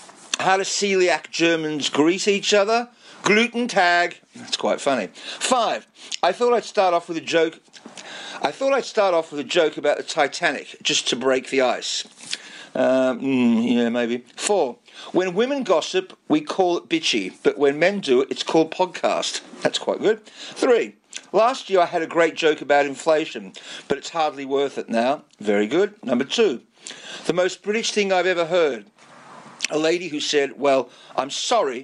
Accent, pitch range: British, 140-210 Hz